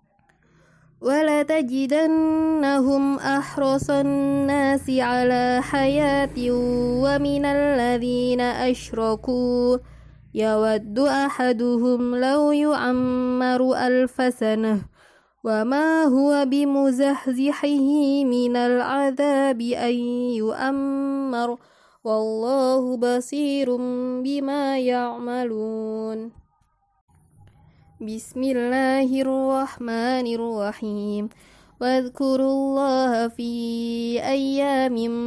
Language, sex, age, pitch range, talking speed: Indonesian, female, 20-39, 235-275 Hz, 55 wpm